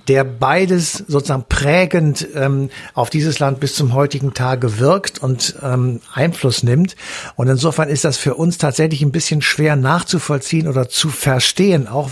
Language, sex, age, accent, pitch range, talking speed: German, male, 60-79, German, 130-155 Hz, 160 wpm